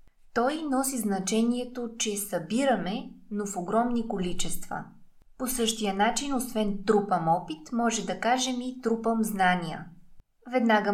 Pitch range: 195-240 Hz